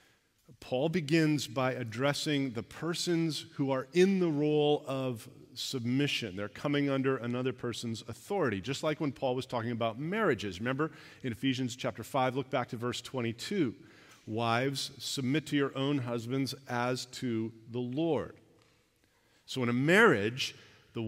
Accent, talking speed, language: American, 150 wpm, English